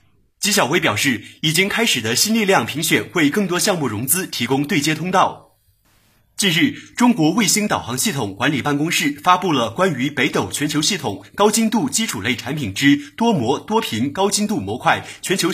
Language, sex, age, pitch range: Chinese, male, 30-49, 135-195 Hz